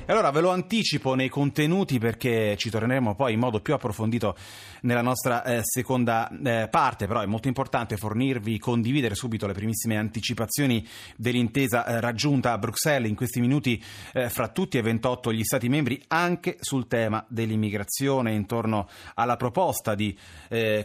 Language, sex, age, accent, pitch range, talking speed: Italian, male, 30-49, native, 115-140 Hz, 160 wpm